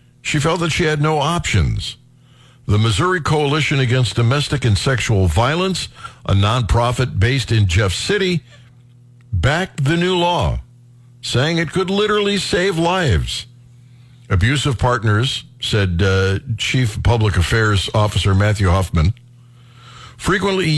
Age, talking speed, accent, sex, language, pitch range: 60-79, 120 wpm, American, male, English, 115-140 Hz